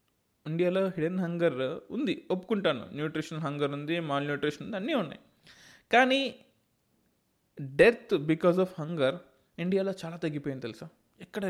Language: Telugu